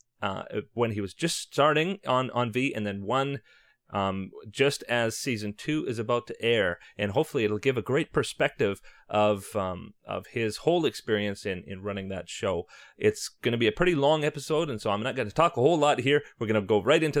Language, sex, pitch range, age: English, male, 105-145 Hz, 30-49